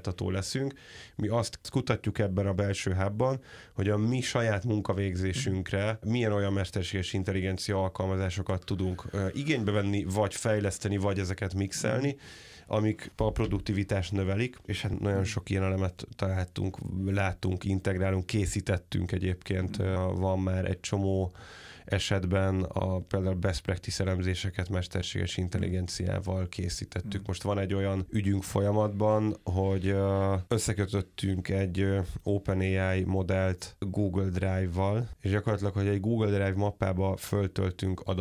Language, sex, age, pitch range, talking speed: Hungarian, male, 30-49, 95-105 Hz, 120 wpm